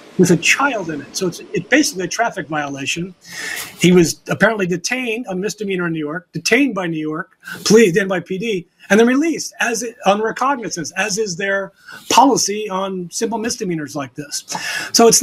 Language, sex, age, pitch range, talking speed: English, male, 40-59, 170-225 Hz, 175 wpm